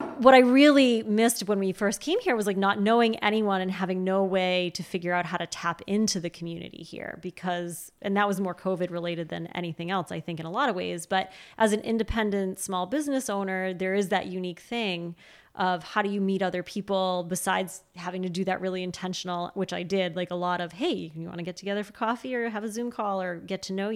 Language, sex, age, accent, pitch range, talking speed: English, female, 20-39, American, 180-210 Hz, 240 wpm